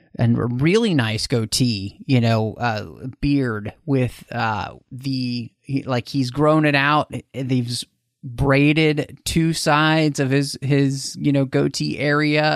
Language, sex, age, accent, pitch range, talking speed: English, male, 30-49, American, 135-180 Hz, 145 wpm